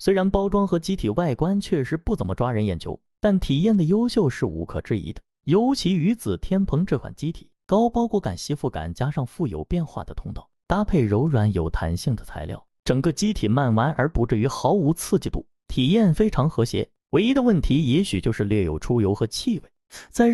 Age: 30-49